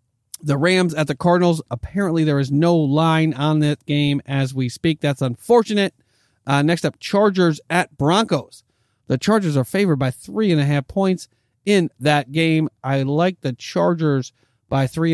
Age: 40-59